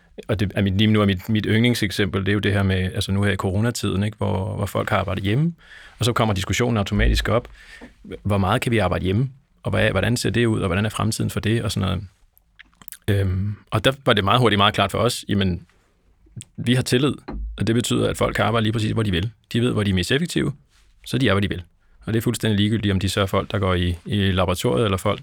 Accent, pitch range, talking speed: native, 100-115 Hz, 260 wpm